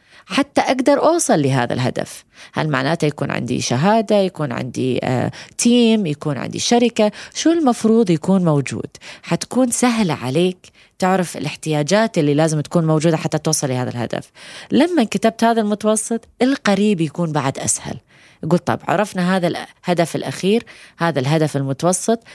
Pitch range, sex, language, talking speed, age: 145-205 Hz, female, Arabic, 135 wpm, 20-39